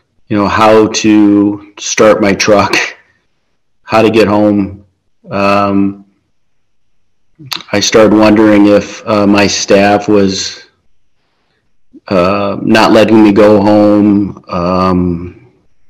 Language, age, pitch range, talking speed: English, 40-59, 100-110 Hz, 100 wpm